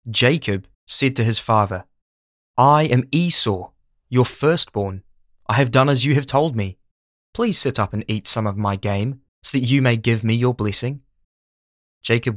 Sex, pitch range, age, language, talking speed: male, 100-135 Hz, 20-39, English, 175 wpm